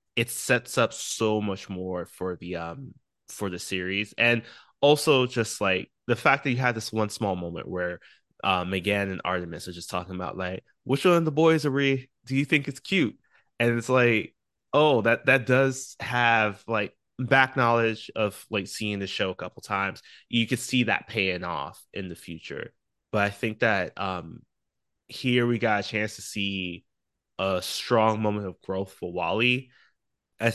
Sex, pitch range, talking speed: male, 95-120 Hz, 190 wpm